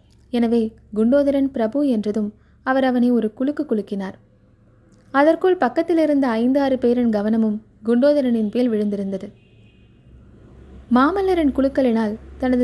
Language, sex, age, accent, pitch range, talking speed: Tamil, female, 20-39, native, 210-255 Hz, 105 wpm